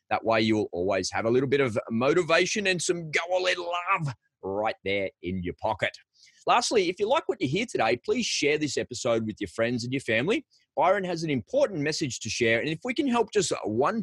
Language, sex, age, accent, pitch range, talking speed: English, male, 30-49, Australian, 120-195 Hz, 220 wpm